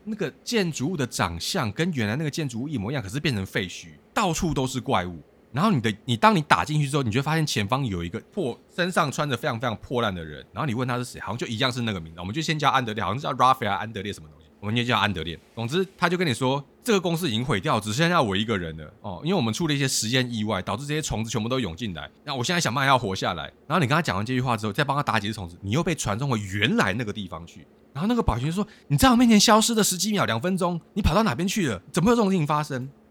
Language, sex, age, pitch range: Chinese, male, 20-39, 100-160 Hz